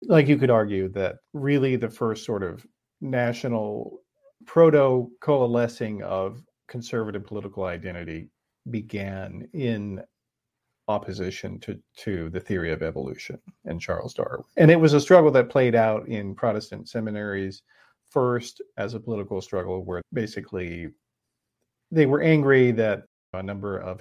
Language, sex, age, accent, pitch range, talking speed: English, male, 40-59, American, 95-125 Hz, 130 wpm